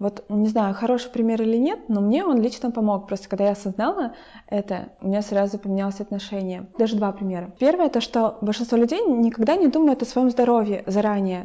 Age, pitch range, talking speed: 20-39, 200-230 Hz, 195 wpm